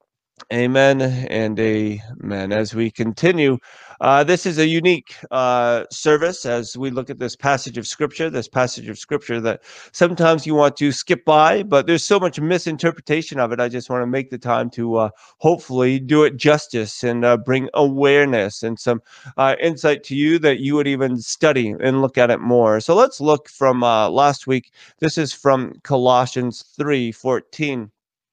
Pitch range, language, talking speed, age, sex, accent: 125-155 Hz, English, 180 wpm, 30-49, male, American